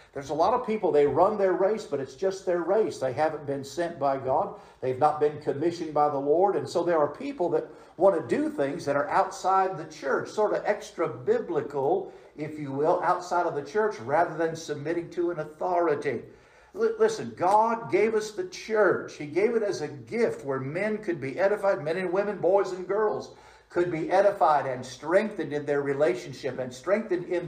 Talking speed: 205 wpm